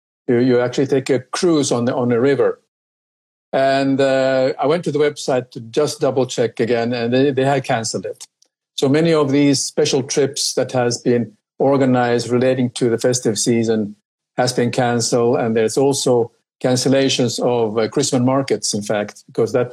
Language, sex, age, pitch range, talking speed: English, male, 50-69, 120-145 Hz, 180 wpm